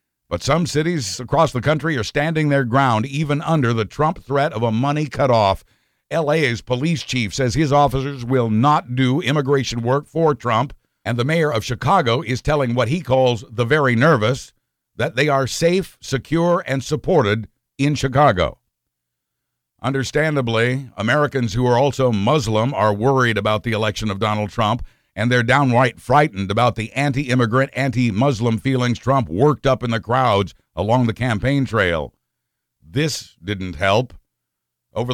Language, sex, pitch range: English, male, 110-145 Hz